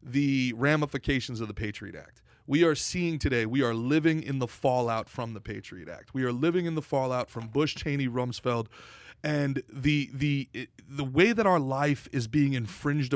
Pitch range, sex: 125-160 Hz, male